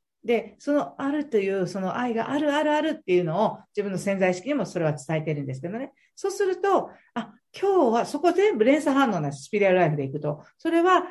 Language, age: Japanese, 50-69